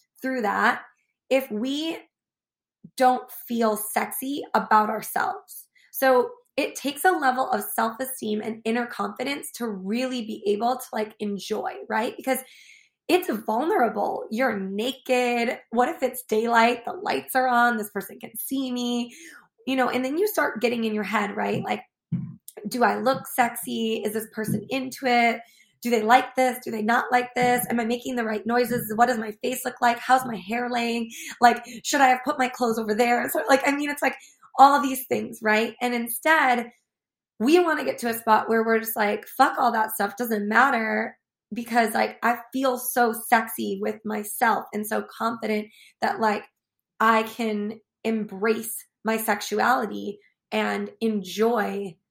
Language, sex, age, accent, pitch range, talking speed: English, female, 20-39, American, 220-255 Hz, 175 wpm